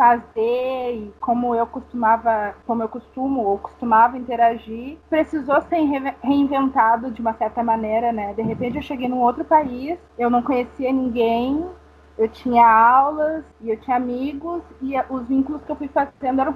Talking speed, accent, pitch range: 165 wpm, Brazilian, 240-300 Hz